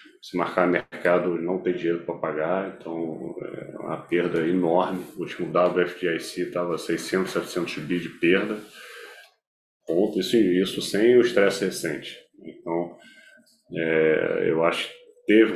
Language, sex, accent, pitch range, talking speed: Portuguese, male, Brazilian, 85-95 Hz, 140 wpm